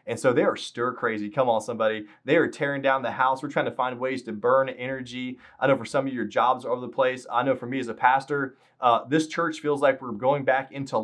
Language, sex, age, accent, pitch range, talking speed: English, male, 20-39, American, 125-140 Hz, 270 wpm